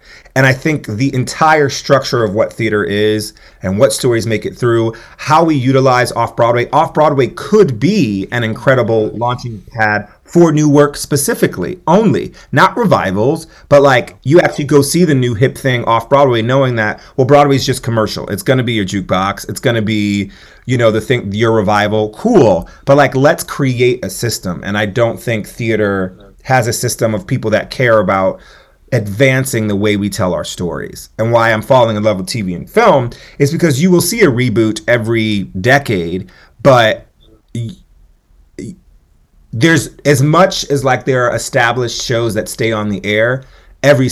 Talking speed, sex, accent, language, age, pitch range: 175 wpm, male, American, English, 30-49, 105-135 Hz